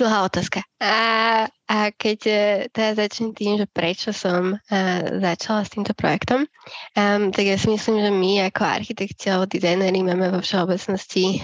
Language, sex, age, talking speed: Slovak, female, 20-39, 155 wpm